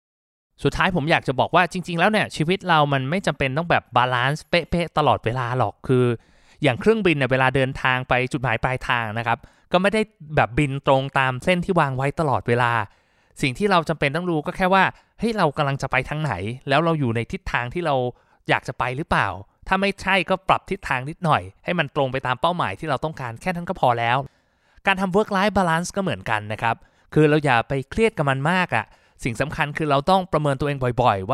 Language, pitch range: Thai, 115-165 Hz